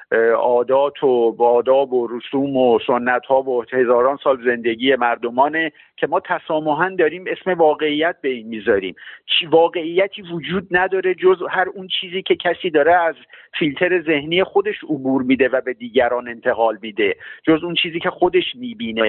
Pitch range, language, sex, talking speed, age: 130-185 Hz, Persian, male, 155 wpm, 50-69